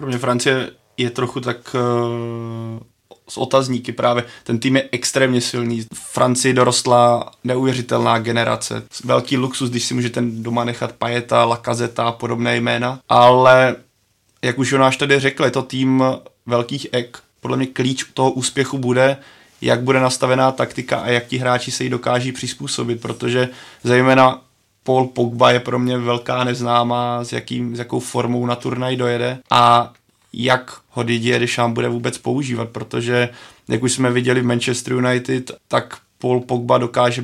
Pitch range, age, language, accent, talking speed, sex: 120-130 Hz, 20-39, Czech, native, 165 wpm, male